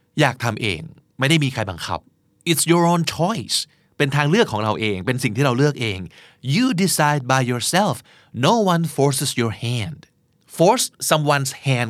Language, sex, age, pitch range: Thai, male, 30-49, 115-160 Hz